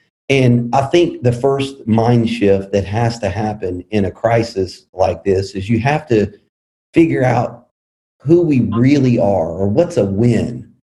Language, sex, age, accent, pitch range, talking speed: English, male, 40-59, American, 105-130 Hz, 165 wpm